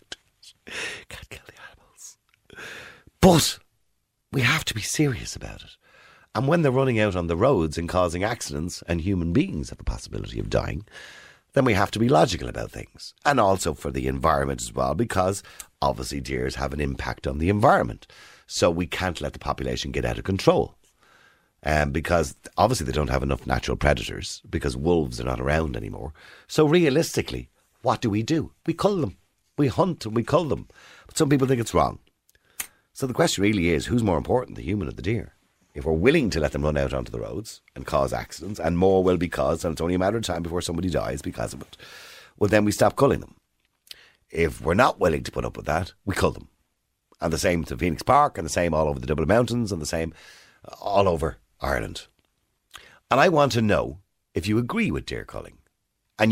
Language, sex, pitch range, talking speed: English, male, 75-105 Hz, 210 wpm